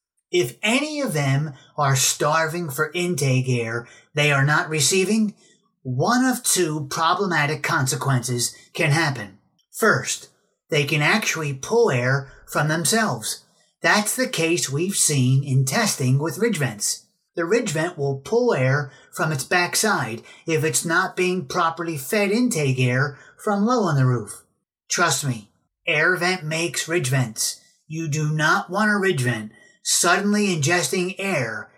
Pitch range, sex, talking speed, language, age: 140-195 Hz, male, 145 wpm, English, 30-49